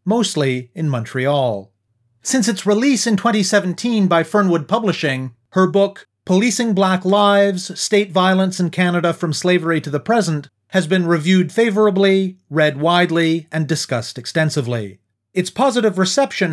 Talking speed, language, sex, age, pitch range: 135 wpm, English, male, 40-59, 160-210 Hz